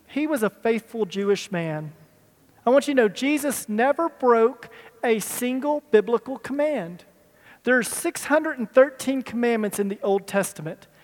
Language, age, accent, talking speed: English, 40-59, American, 140 wpm